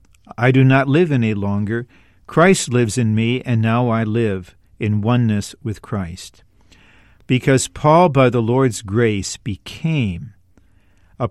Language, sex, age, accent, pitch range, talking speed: English, male, 50-69, American, 100-130 Hz, 140 wpm